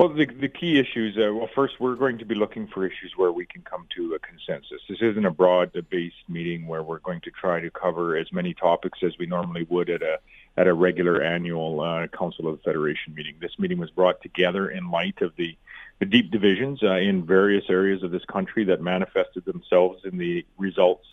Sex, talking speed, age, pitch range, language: male, 220 wpm, 40-59, 90-115 Hz, English